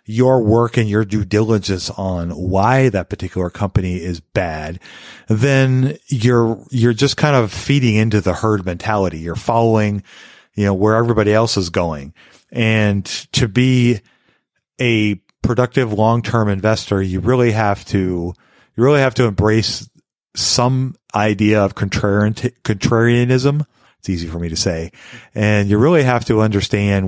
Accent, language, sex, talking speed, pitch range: American, English, male, 150 wpm, 100-120 Hz